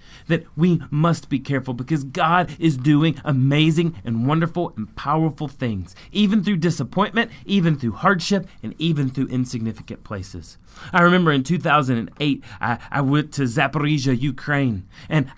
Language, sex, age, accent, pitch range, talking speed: English, male, 30-49, American, 135-175 Hz, 145 wpm